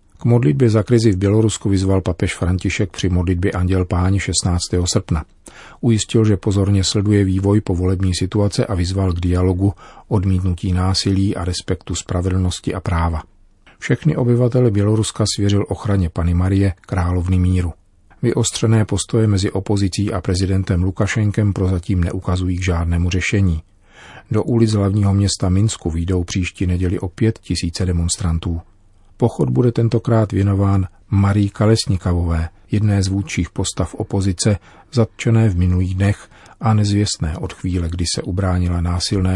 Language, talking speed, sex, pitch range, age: Czech, 135 wpm, male, 90-105 Hz, 40-59